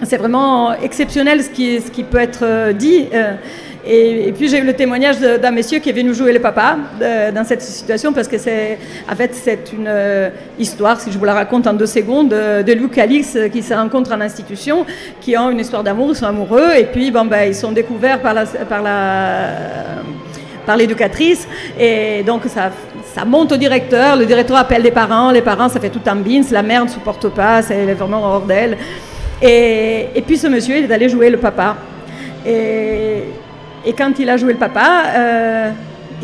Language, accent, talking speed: French, French, 200 wpm